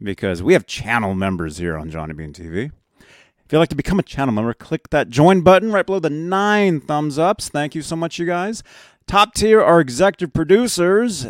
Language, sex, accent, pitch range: English, male, American, 125-185 Hz